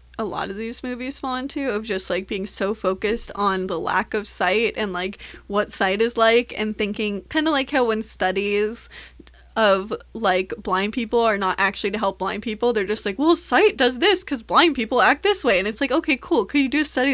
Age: 20-39